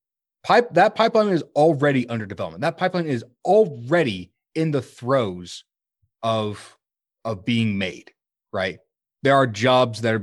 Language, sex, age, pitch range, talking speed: English, male, 30-49, 105-145 Hz, 135 wpm